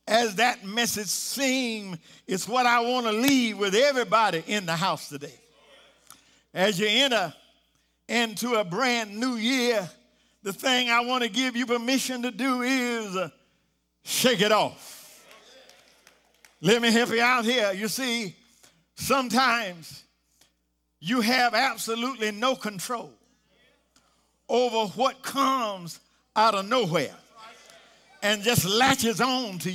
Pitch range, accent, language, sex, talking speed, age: 210-260 Hz, American, English, male, 125 wpm, 50-69